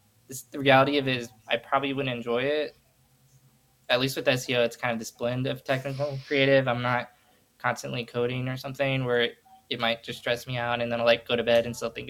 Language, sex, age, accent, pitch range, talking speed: English, male, 20-39, American, 120-140 Hz, 240 wpm